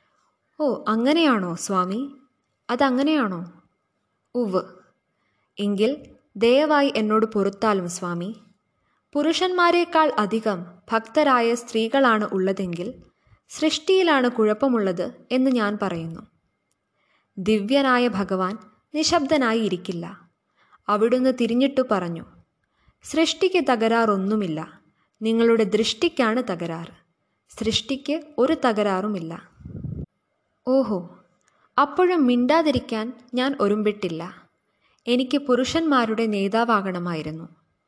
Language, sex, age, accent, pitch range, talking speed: Malayalam, female, 20-39, native, 205-275 Hz, 70 wpm